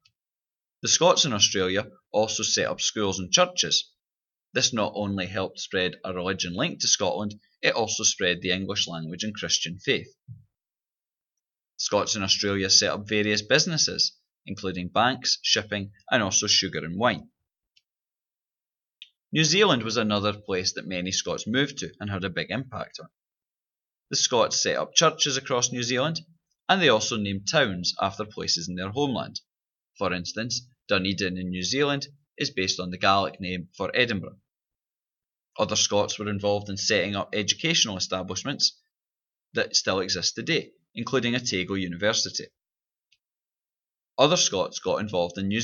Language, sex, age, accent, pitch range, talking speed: English, male, 20-39, British, 95-125 Hz, 150 wpm